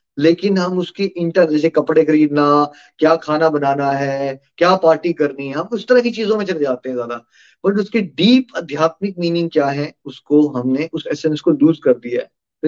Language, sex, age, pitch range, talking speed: Hindi, male, 20-39, 145-175 Hz, 200 wpm